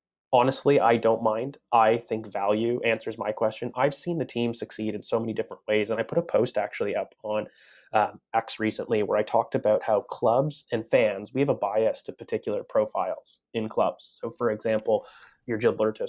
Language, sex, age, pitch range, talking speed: English, male, 20-39, 105-120 Hz, 200 wpm